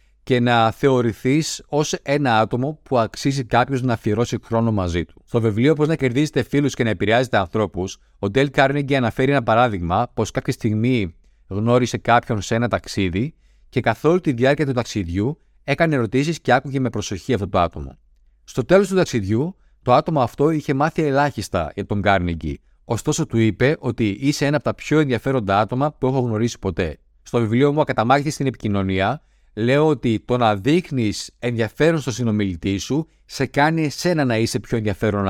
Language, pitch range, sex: Greek, 105-140 Hz, male